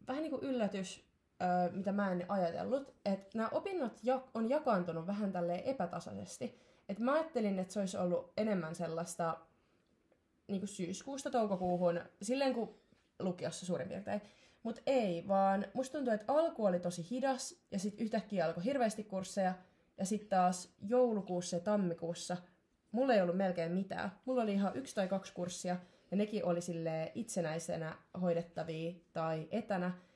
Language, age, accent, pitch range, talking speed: Finnish, 20-39, native, 175-220 Hz, 145 wpm